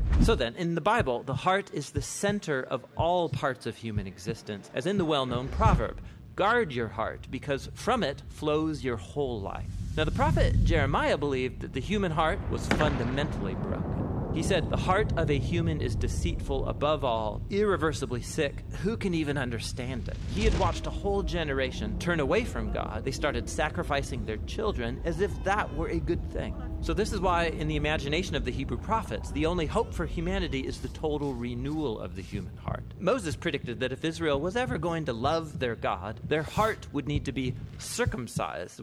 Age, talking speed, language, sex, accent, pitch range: 30-49, 195 wpm, English, male, American, 115-155 Hz